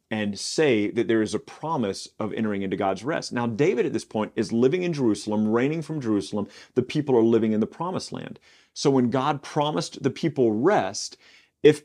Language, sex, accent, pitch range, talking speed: English, male, American, 110-145 Hz, 205 wpm